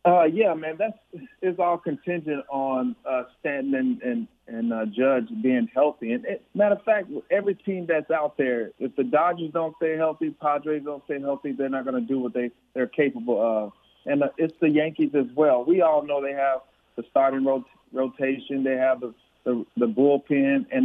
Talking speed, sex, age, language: 200 wpm, male, 40-59, English